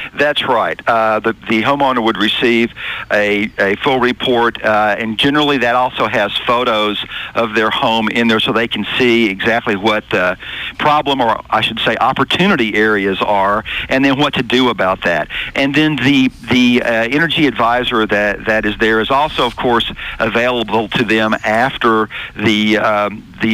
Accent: American